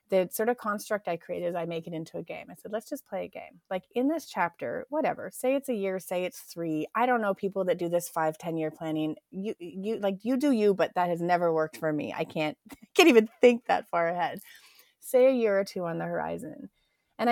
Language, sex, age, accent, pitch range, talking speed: English, female, 30-49, American, 170-220 Hz, 255 wpm